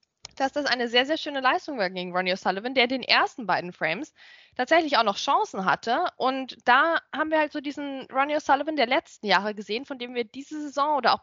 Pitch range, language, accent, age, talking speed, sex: 245-310 Hz, German, German, 20-39, 220 wpm, female